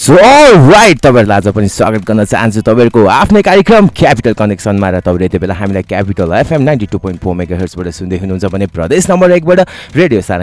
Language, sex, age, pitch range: English, male, 30-49, 90-115 Hz